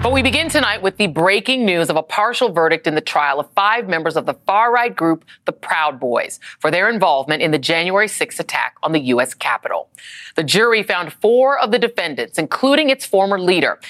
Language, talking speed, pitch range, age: English, 205 wpm, 160-215 Hz, 40-59